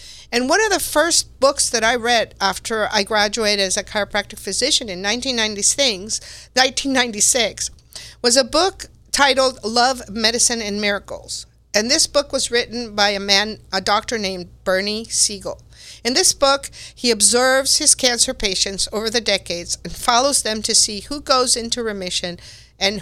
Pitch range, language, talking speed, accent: 210-265 Hz, English, 165 wpm, American